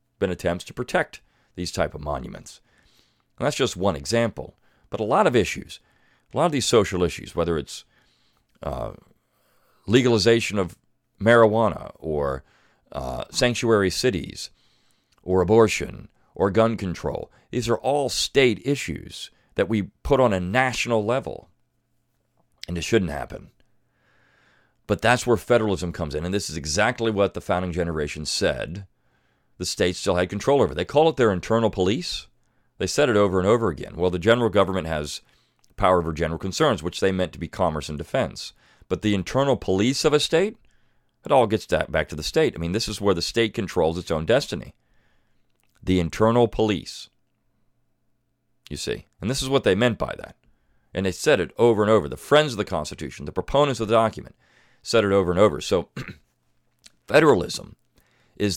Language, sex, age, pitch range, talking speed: English, male, 40-59, 90-120 Hz, 175 wpm